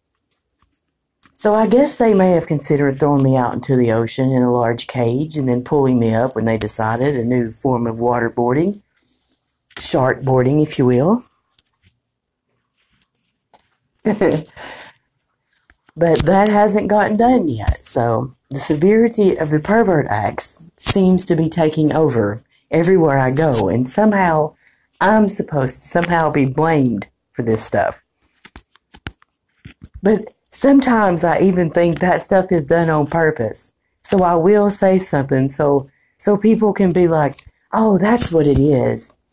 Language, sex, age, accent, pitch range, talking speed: English, female, 50-69, American, 130-190 Hz, 140 wpm